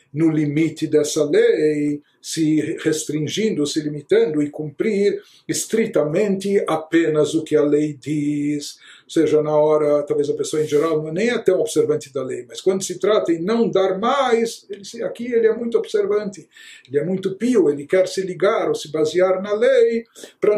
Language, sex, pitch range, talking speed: Portuguese, male, 150-205 Hz, 175 wpm